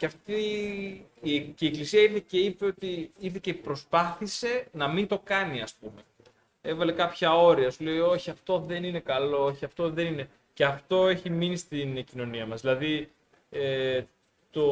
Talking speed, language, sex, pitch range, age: 175 wpm, Greek, male, 135-170 Hz, 20-39